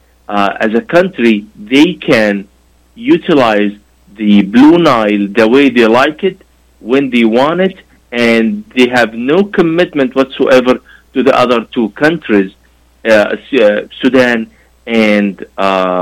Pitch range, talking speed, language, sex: 105-145 Hz, 125 wpm, Arabic, male